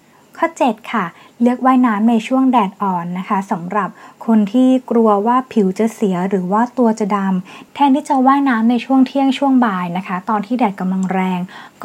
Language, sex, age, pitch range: Thai, female, 20-39, 200-245 Hz